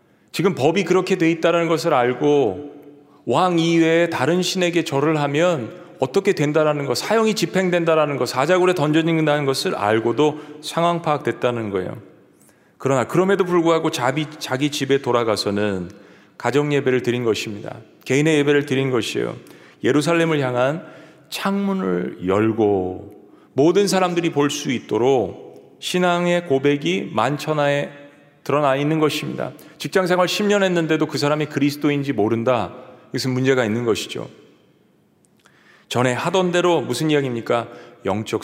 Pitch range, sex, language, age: 130-170 Hz, male, Korean, 30-49